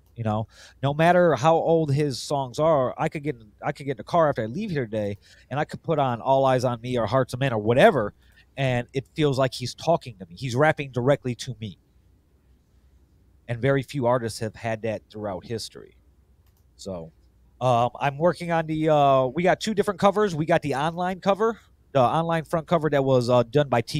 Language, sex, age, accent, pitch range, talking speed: English, male, 30-49, American, 110-150 Hz, 220 wpm